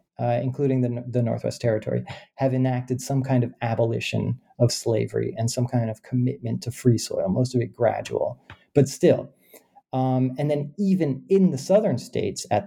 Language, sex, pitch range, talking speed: English, male, 120-145 Hz, 175 wpm